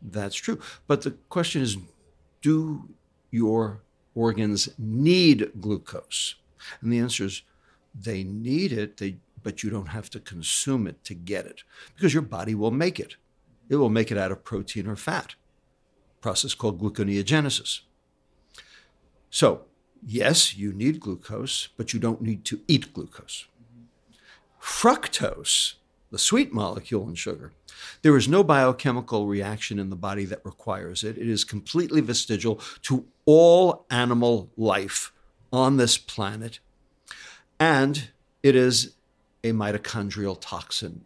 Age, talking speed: 60-79, 135 wpm